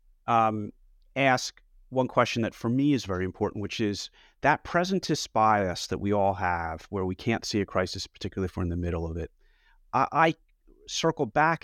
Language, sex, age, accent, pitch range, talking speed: English, male, 30-49, American, 90-115 Hz, 190 wpm